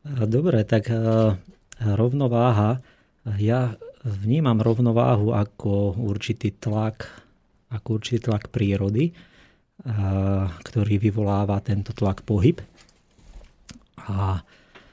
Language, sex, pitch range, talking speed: Slovak, male, 100-120 Hz, 75 wpm